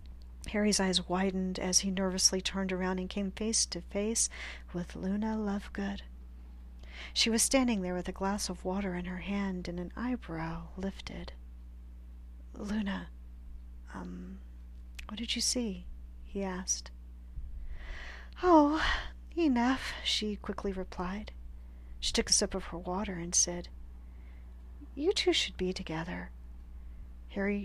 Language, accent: English, American